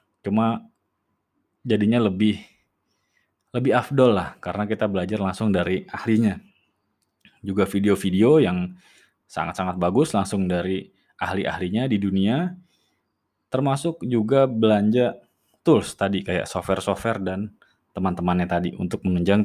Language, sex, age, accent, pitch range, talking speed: Indonesian, male, 20-39, native, 95-115 Hz, 105 wpm